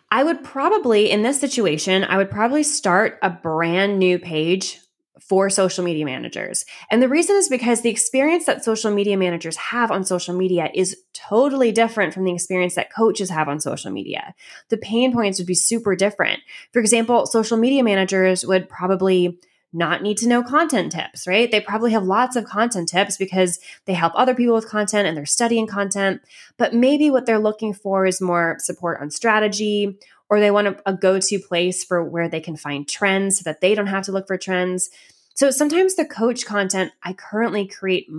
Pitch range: 180-225 Hz